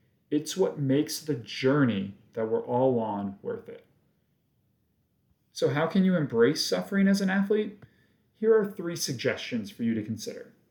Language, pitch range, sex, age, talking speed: English, 120-190 Hz, male, 40-59, 155 wpm